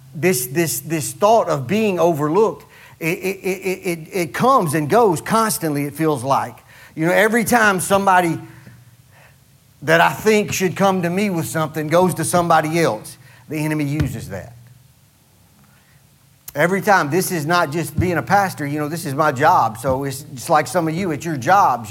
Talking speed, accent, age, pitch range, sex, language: 180 wpm, American, 40-59, 145-190 Hz, male, English